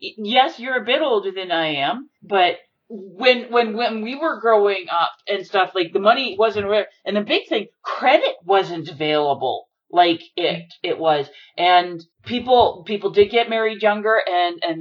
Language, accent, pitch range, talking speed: English, American, 180-230 Hz, 175 wpm